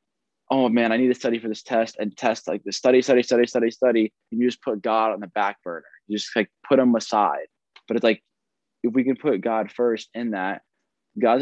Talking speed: 235 wpm